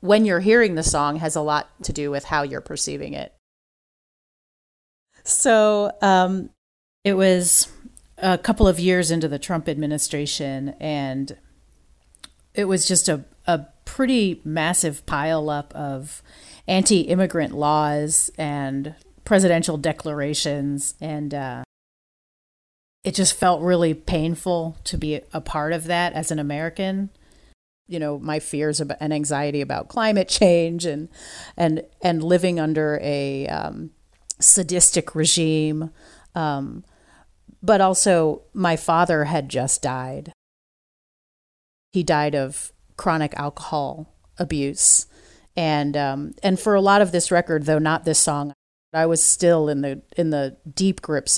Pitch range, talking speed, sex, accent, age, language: 145-175 Hz, 130 wpm, female, American, 40-59, English